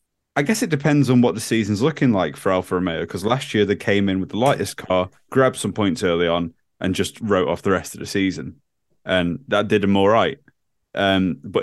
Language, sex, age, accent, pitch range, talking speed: English, male, 20-39, British, 95-125 Hz, 230 wpm